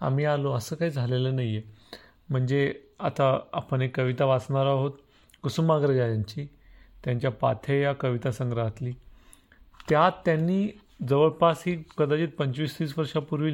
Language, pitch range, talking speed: Marathi, 120-150 Hz, 100 wpm